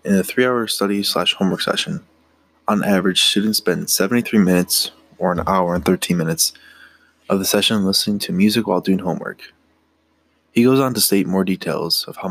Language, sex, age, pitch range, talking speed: English, male, 20-39, 90-105 Hz, 185 wpm